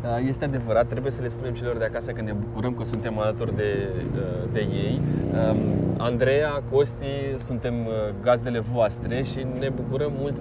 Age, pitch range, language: 20-39, 115-135 Hz, Romanian